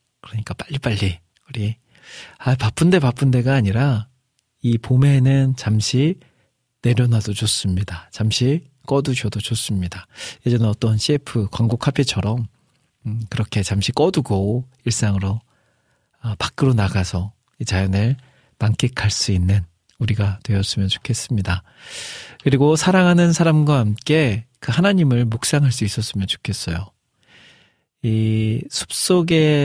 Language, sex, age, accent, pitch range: Korean, male, 40-59, native, 105-135 Hz